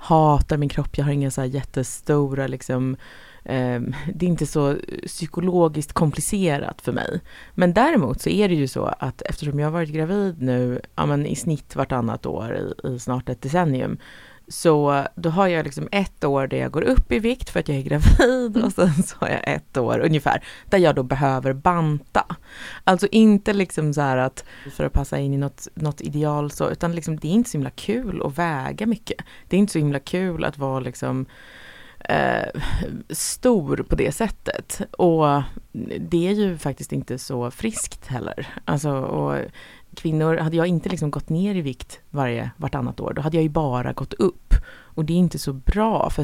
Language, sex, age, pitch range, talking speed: Swedish, female, 30-49, 140-190 Hz, 195 wpm